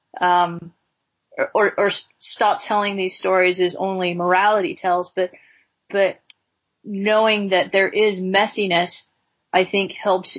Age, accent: 30-49, American